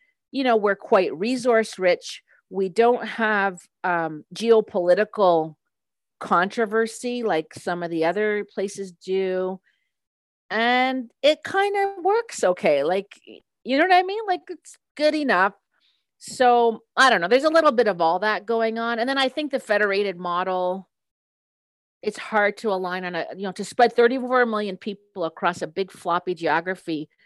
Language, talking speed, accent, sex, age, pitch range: English, 160 wpm, American, female, 40-59, 175-245 Hz